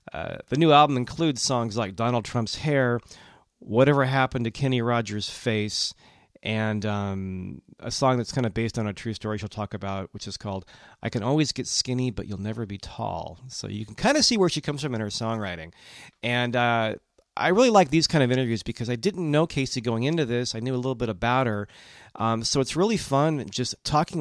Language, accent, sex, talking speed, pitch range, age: English, American, male, 220 wpm, 110-130 Hz, 40-59